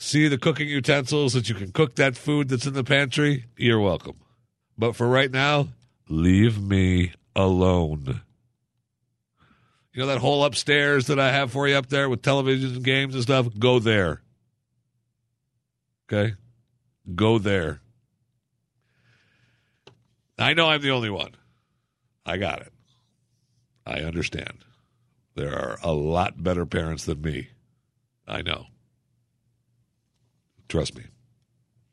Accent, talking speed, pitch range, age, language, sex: American, 130 wpm, 105-130 Hz, 60-79, English, male